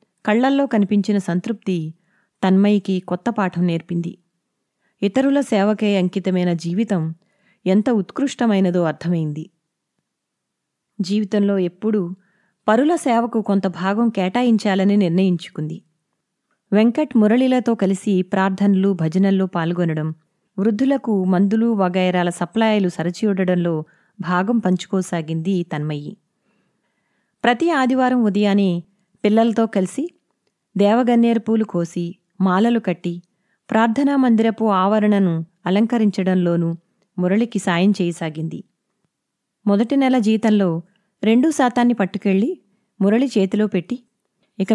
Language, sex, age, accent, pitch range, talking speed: Telugu, female, 20-39, native, 180-225 Hz, 85 wpm